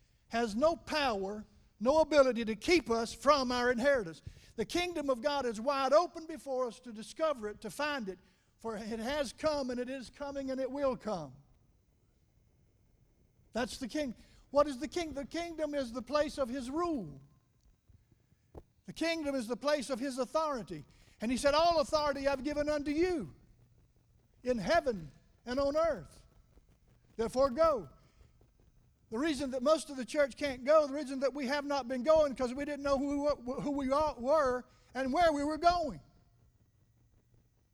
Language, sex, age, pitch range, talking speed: English, male, 60-79, 190-285 Hz, 170 wpm